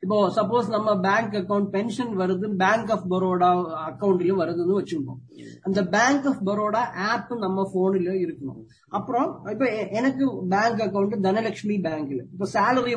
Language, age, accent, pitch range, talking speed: English, 20-39, Indian, 190-240 Hz, 120 wpm